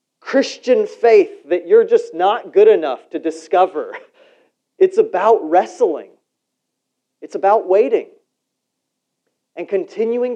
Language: English